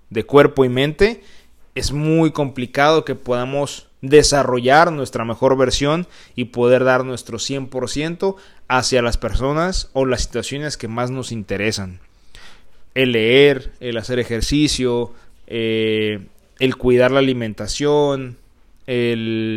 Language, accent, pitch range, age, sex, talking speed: Spanish, Mexican, 115-145 Hz, 30-49, male, 120 wpm